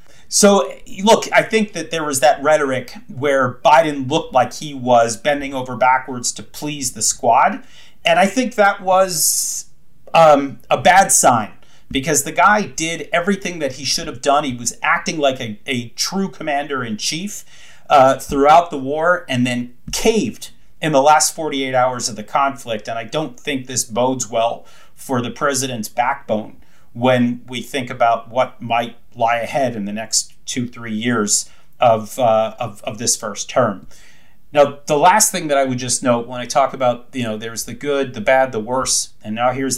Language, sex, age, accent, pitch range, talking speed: English, male, 40-59, American, 120-150 Hz, 185 wpm